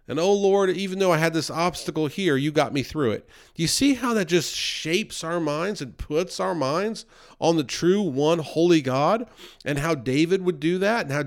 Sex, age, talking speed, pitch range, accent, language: male, 40-59, 225 wpm, 130-175 Hz, American, English